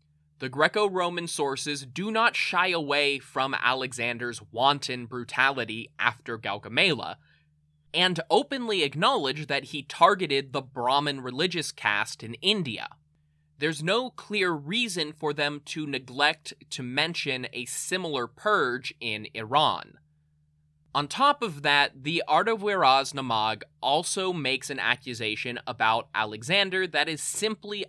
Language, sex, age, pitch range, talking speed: English, male, 20-39, 120-170 Hz, 120 wpm